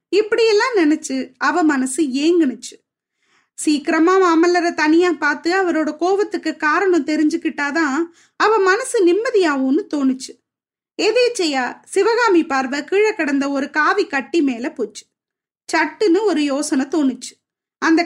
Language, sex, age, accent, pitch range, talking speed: Tamil, female, 20-39, native, 280-360 Hz, 105 wpm